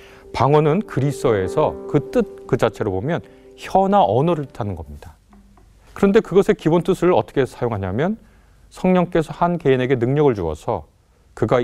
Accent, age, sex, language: native, 30-49, male, Korean